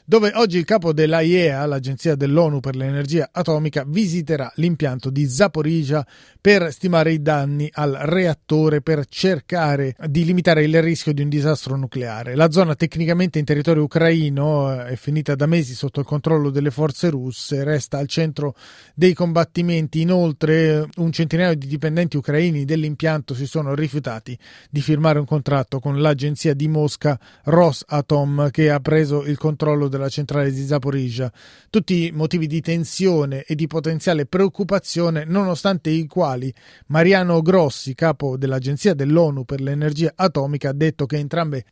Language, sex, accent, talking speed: Italian, male, native, 145 wpm